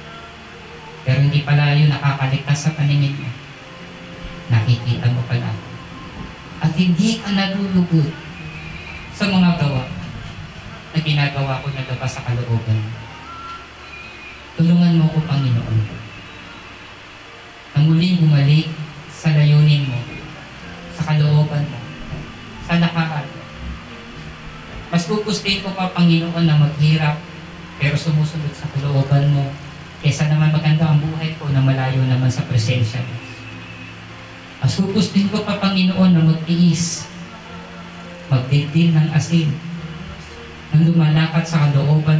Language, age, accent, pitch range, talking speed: Filipino, 20-39, native, 130-170 Hz, 105 wpm